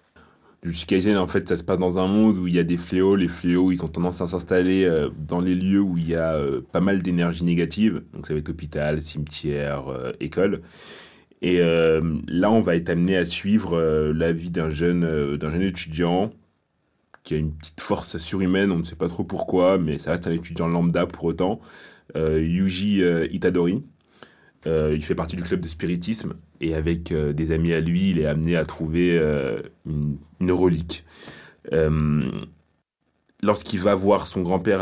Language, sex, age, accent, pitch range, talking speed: French, male, 30-49, French, 80-90 Hz, 185 wpm